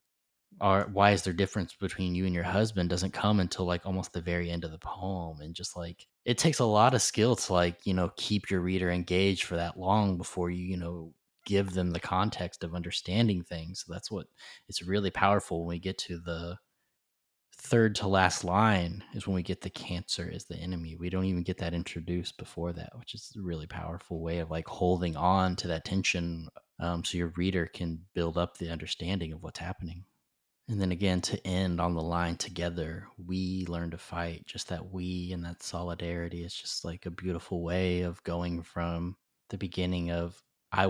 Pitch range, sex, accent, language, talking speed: 85-95 Hz, male, American, English, 205 wpm